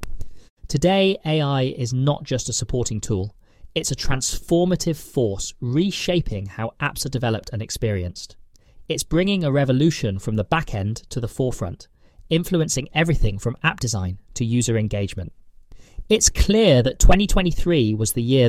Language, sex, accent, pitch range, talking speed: English, male, British, 105-150 Hz, 145 wpm